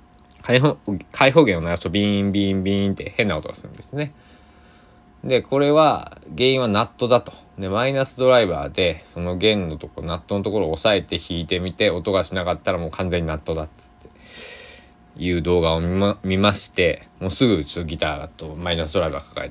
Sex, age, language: male, 20-39, Japanese